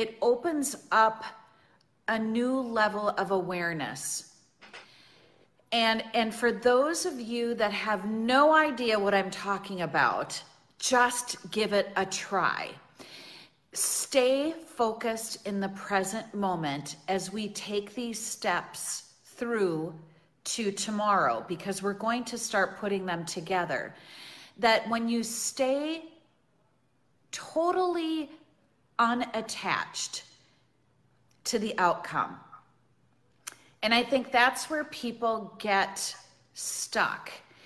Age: 40-59